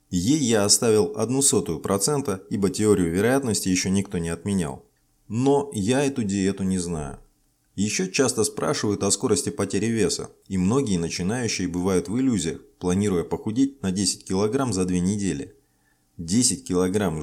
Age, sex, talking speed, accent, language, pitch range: 20-39, male, 145 wpm, native, Russian, 95-130 Hz